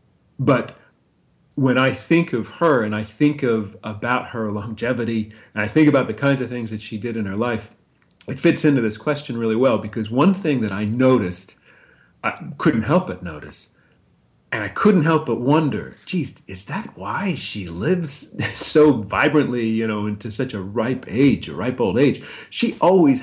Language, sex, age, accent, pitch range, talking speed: English, male, 40-59, American, 105-140 Hz, 185 wpm